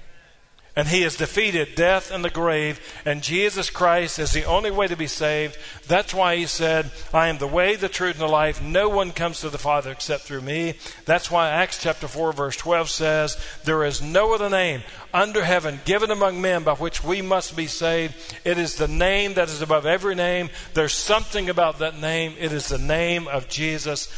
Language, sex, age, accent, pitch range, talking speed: English, male, 50-69, American, 150-180 Hz, 210 wpm